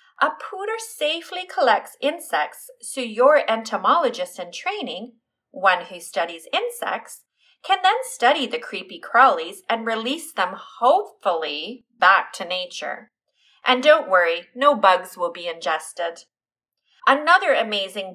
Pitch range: 195-305 Hz